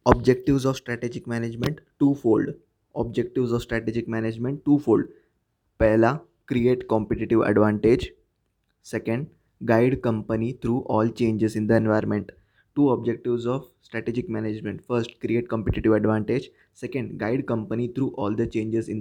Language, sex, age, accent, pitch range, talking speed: Hindi, male, 20-39, native, 110-130 Hz, 135 wpm